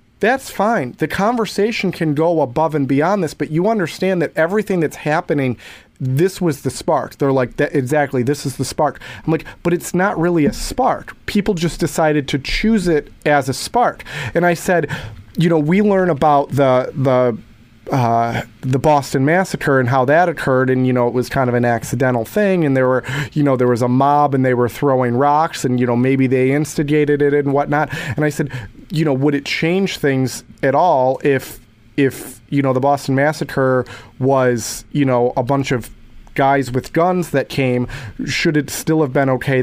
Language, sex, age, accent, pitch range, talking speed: English, male, 30-49, American, 130-160 Hz, 200 wpm